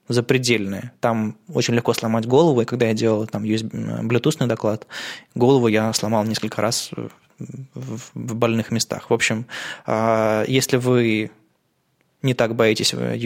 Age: 20-39